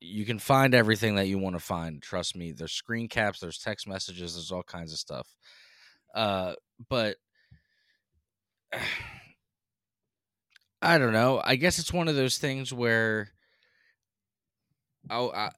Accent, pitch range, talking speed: American, 90-115 Hz, 140 wpm